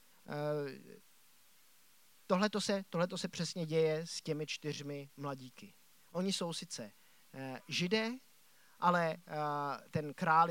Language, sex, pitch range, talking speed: Czech, male, 155-210 Hz, 95 wpm